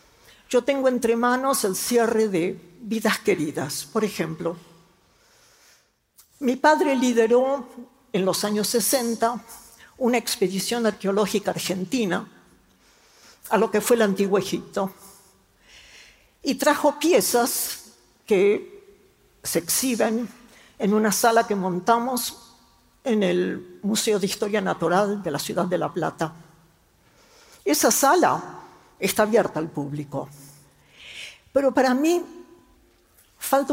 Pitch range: 185-250 Hz